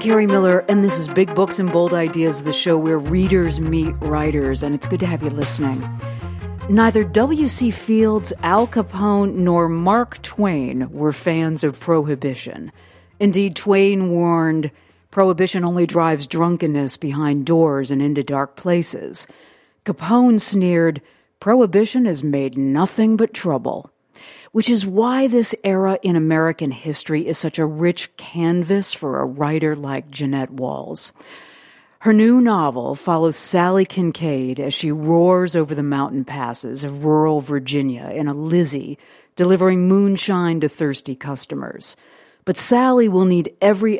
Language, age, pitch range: English, 50-69, 145-190 Hz